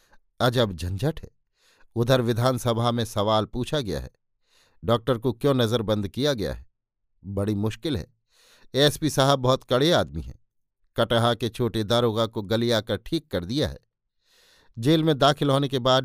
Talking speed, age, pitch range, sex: 165 wpm, 50-69, 110-130 Hz, male